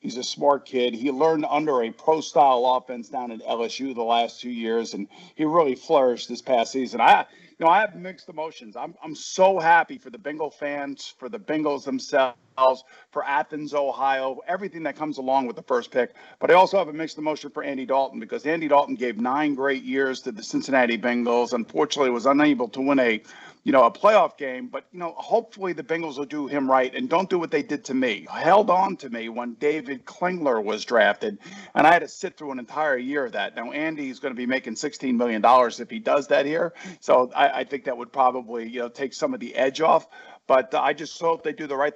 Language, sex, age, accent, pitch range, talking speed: English, male, 50-69, American, 130-155 Hz, 225 wpm